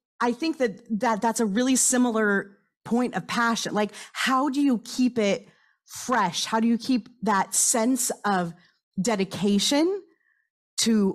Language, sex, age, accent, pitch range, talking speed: English, female, 30-49, American, 175-230 Hz, 145 wpm